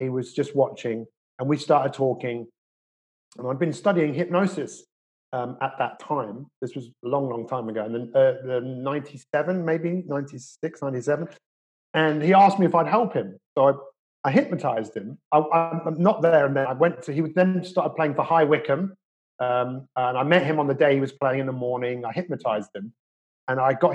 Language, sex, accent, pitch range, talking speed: English, male, British, 130-175 Hz, 190 wpm